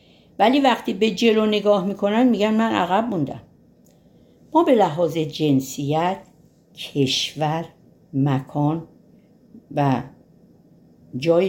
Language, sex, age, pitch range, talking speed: Persian, female, 60-79, 125-185 Hz, 95 wpm